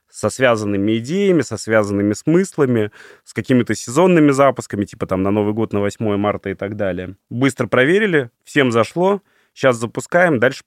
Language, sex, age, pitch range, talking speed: Russian, male, 30-49, 110-145 Hz, 160 wpm